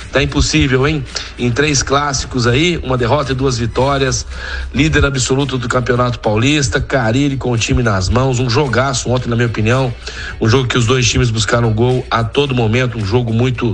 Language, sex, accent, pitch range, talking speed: Portuguese, male, Brazilian, 110-135 Hz, 190 wpm